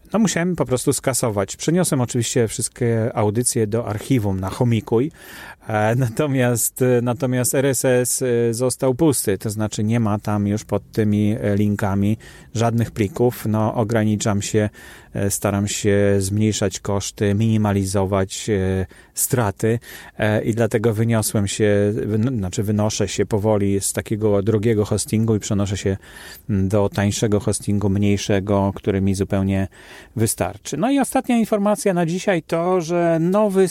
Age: 30-49